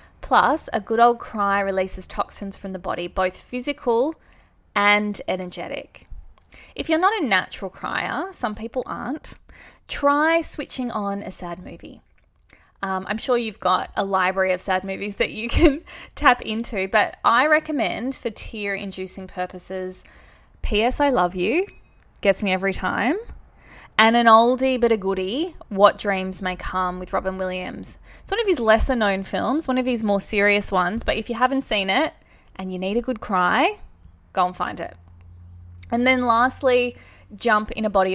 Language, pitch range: English, 190-245 Hz